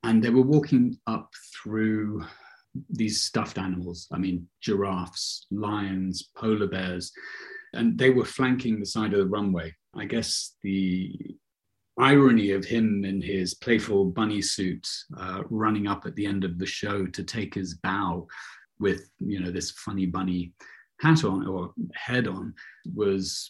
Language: English